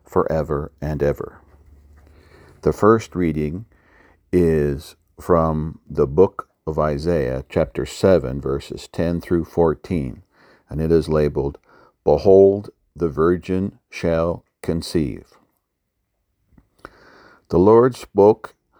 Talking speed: 95 wpm